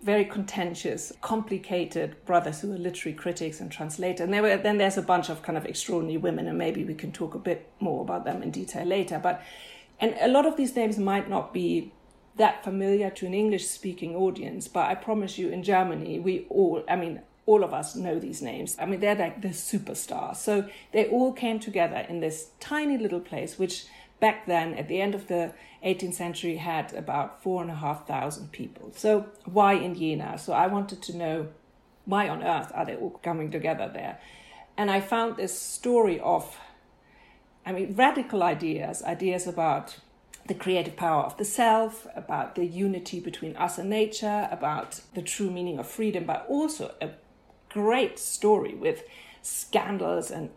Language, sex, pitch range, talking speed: English, female, 170-210 Hz, 185 wpm